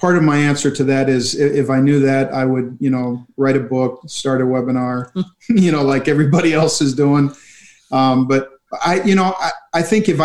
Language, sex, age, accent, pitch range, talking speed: English, male, 40-59, American, 130-155 Hz, 215 wpm